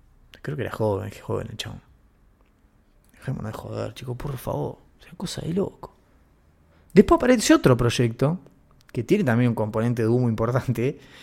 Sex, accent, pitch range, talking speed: male, Argentinian, 115-160 Hz, 165 wpm